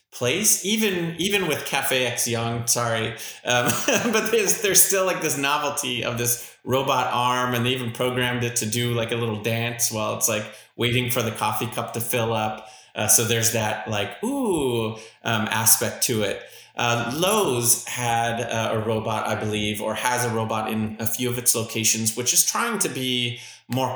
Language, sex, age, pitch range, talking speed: English, male, 30-49, 110-125 Hz, 190 wpm